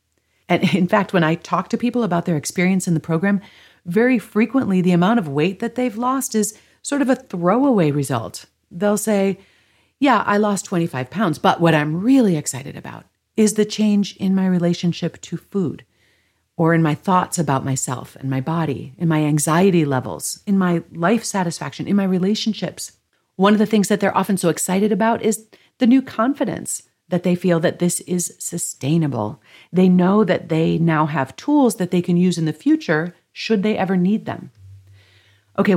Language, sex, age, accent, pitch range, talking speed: English, female, 40-59, American, 155-210 Hz, 185 wpm